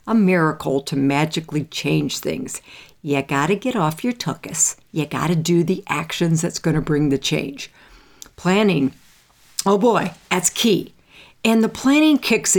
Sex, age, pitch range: female, 60-79, 155-210 Hz